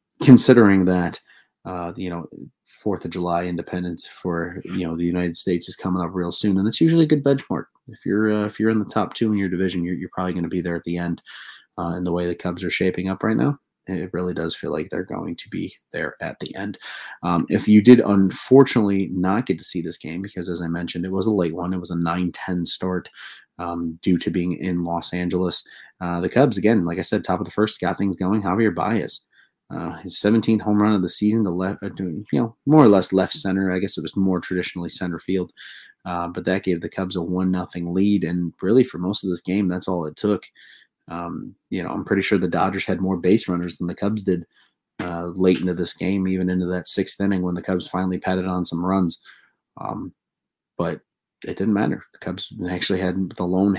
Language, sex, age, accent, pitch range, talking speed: English, male, 30-49, American, 90-100 Hz, 240 wpm